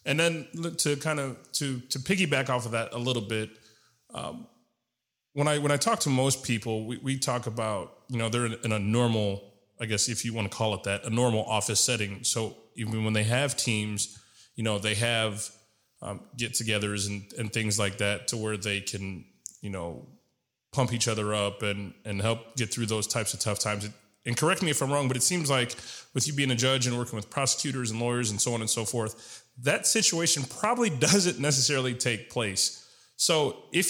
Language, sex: English, male